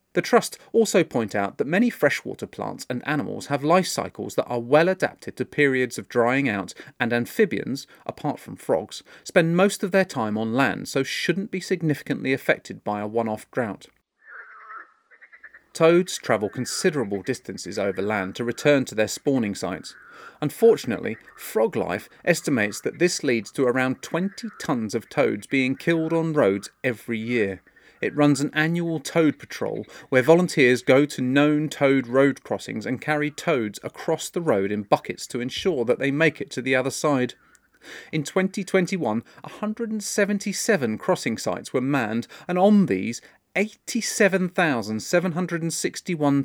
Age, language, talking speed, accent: 30-49, English, 150 wpm, British